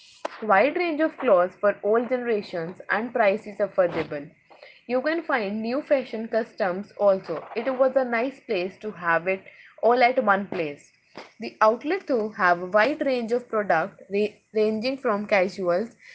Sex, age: female, 20-39